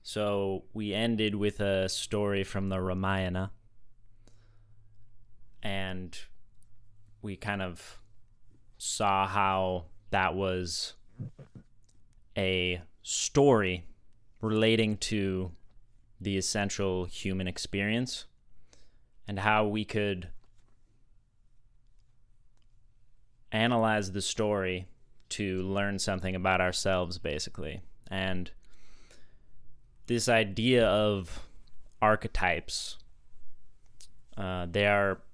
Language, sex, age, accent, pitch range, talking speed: English, male, 20-39, American, 95-110 Hz, 80 wpm